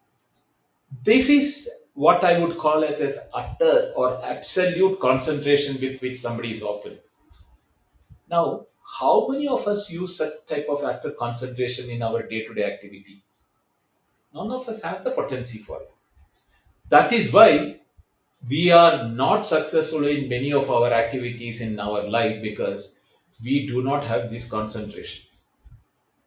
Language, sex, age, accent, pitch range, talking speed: English, male, 50-69, Indian, 110-150 Hz, 140 wpm